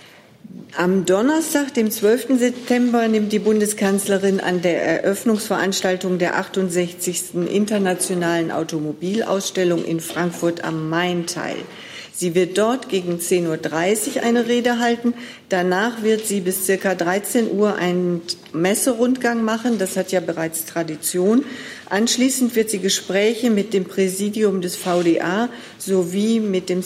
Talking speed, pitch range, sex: 125 wpm, 175-215 Hz, female